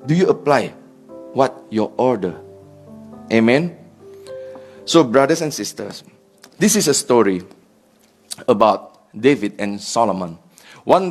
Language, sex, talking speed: English, male, 110 wpm